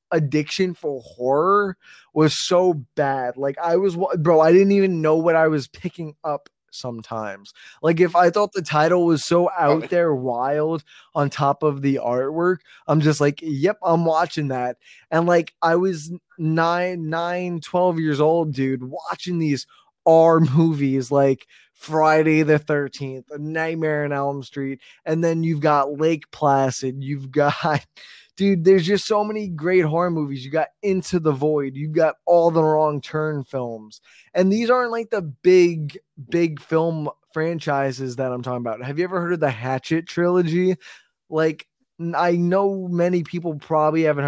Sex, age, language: male, 20-39, English